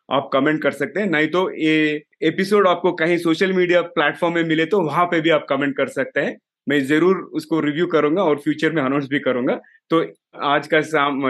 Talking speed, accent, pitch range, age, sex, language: 210 wpm, native, 145-180 Hz, 30-49, male, Hindi